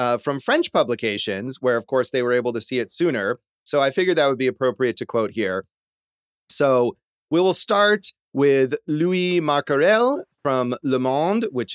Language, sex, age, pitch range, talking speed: English, male, 30-49, 125-180 Hz, 180 wpm